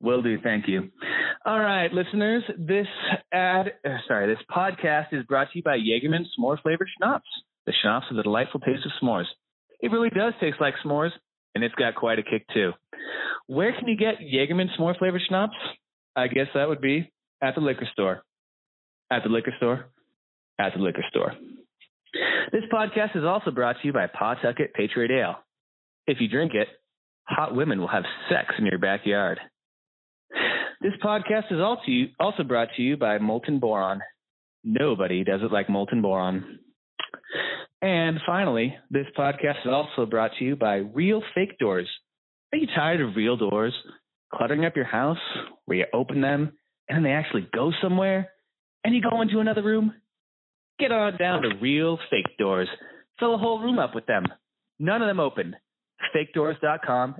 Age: 20-39